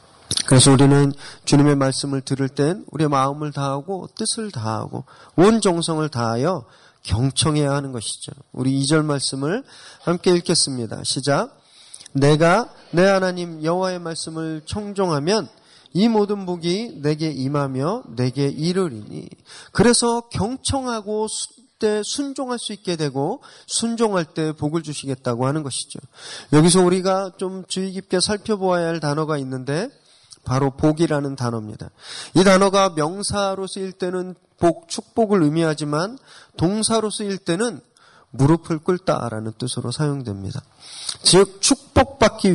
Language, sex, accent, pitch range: Korean, male, native, 140-210 Hz